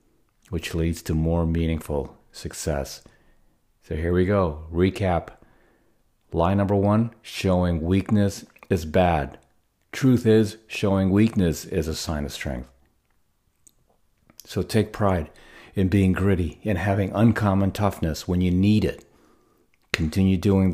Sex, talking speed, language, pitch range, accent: male, 125 wpm, English, 85-105 Hz, American